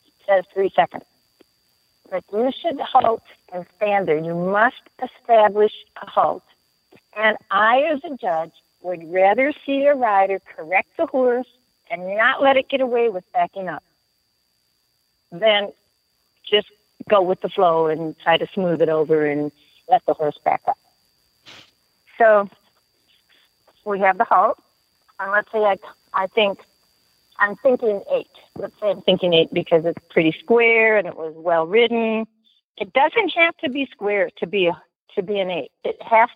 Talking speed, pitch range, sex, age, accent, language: 160 wpm, 180-235 Hz, female, 50-69, American, English